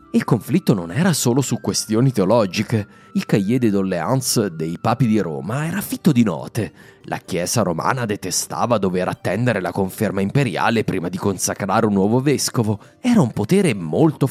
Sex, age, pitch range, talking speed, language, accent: male, 30-49, 95-135 Hz, 165 wpm, Italian, native